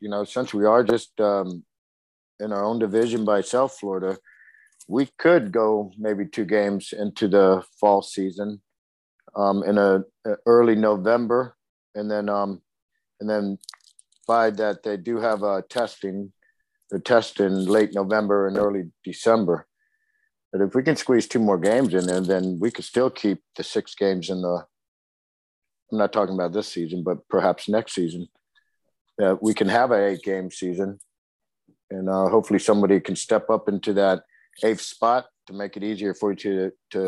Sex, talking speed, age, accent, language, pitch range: male, 175 wpm, 50-69, American, English, 95-110 Hz